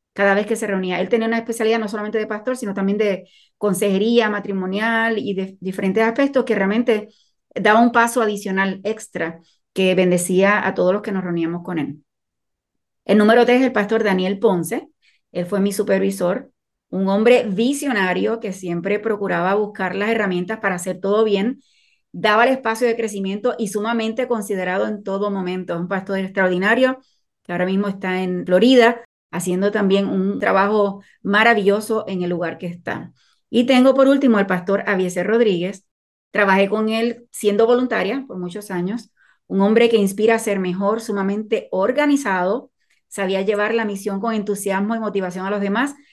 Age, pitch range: 30-49, 190-225 Hz